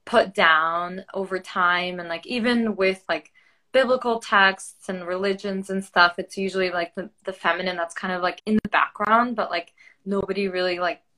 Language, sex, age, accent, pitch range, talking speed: English, female, 20-39, American, 175-205 Hz, 175 wpm